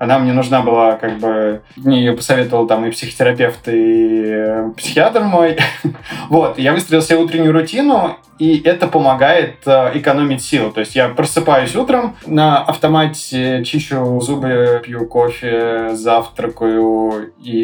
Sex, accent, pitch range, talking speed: male, native, 120-155 Hz, 135 wpm